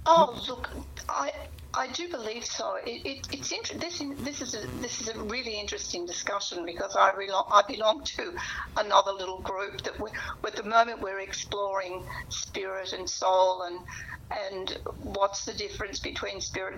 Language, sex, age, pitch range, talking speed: English, female, 60-79, 185-245 Hz, 170 wpm